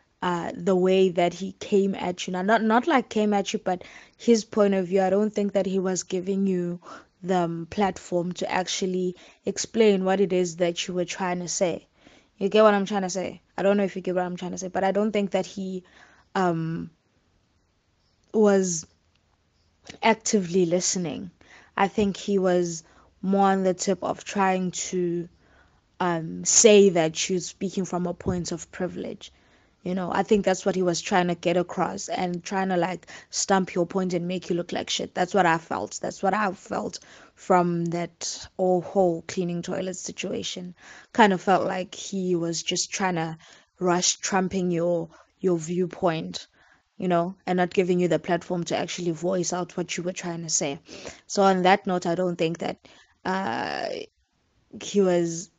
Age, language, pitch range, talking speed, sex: 20-39, English, 175-195 Hz, 190 wpm, female